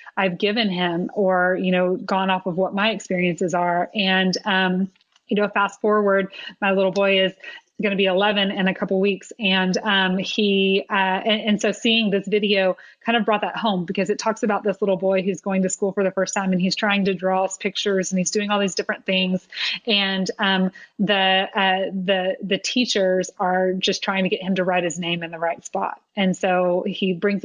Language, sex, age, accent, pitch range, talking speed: English, female, 20-39, American, 180-200 Hz, 220 wpm